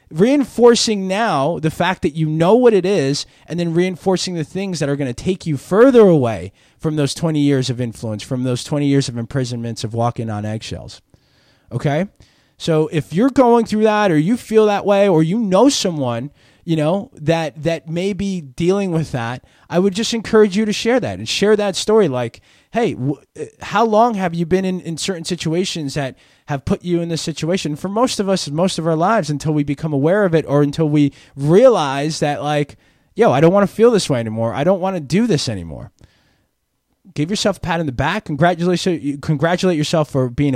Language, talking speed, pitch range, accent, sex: English, 210 wpm, 120-180 Hz, American, male